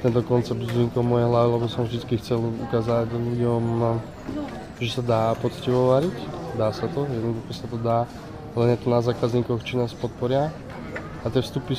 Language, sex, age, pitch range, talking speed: Slovak, male, 20-39, 120-130 Hz, 170 wpm